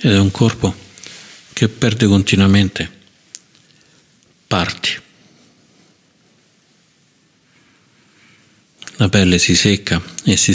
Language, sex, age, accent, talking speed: Italian, male, 50-69, native, 80 wpm